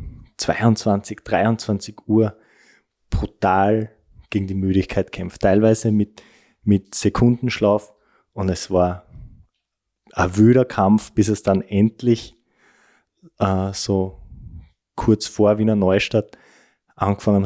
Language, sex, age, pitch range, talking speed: German, male, 20-39, 95-110 Hz, 100 wpm